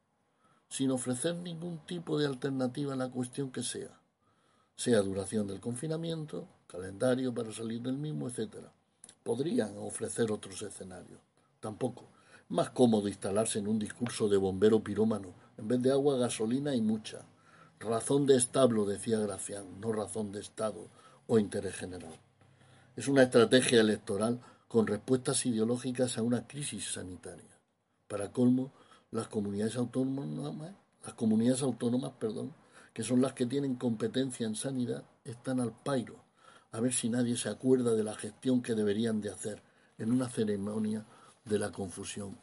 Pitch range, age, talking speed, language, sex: 110-130 Hz, 60-79, 145 wpm, Spanish, male